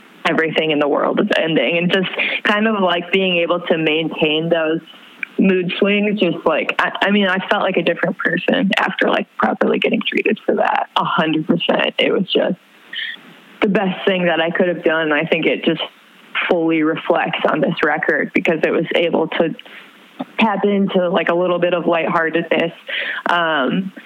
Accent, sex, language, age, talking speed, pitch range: American, female, English, 20-39, 180 wpm, 170-210 Hz